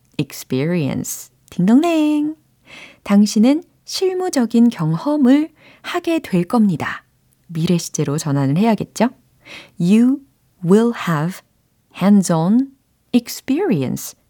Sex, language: female, Korean